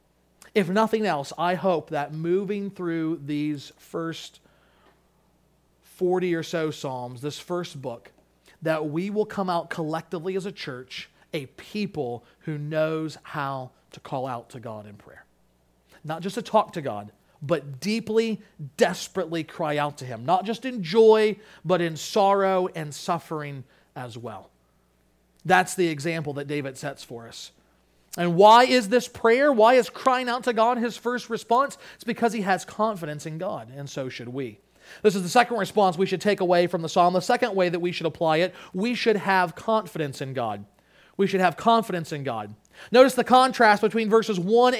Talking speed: 180 wpm